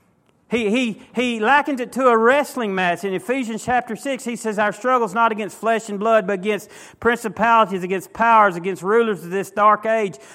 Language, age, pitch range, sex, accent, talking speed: English, 40-59, 190-235 Hz, male, American, 195 wpm